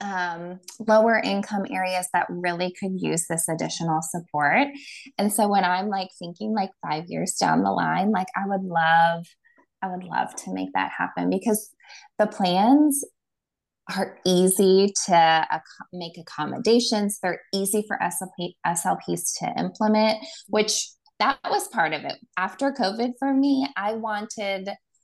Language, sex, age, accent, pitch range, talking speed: English, female, 20-39, American, 170-215 Hz, 145 wpm